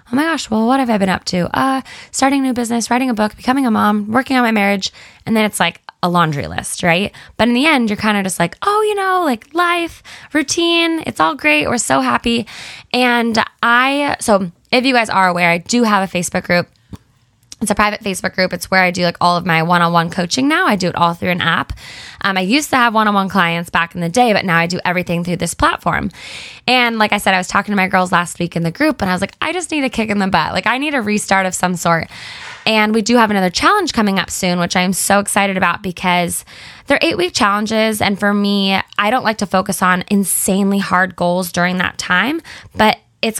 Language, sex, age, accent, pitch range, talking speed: English, female, 10-29, American, 180-240 Hz, 250 wpm